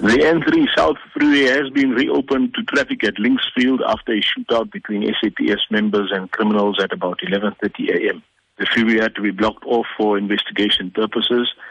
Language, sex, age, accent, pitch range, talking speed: English, male, 50-69, South African, 110-145 Hz, 165 wpm